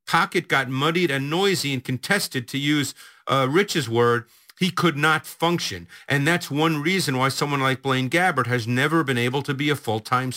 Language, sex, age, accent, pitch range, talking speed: English, male, 50-69, American, 125-160 Hz, 190 wpm